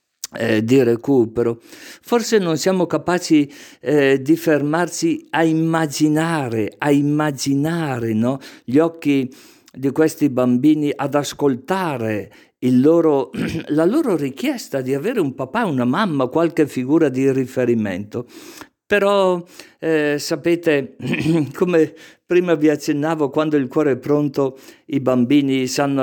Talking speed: 120 wpm